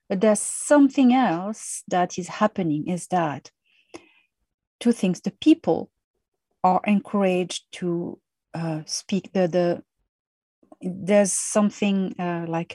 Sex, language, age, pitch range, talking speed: female, English, 40-59, 175-225 Hz, 115 wpm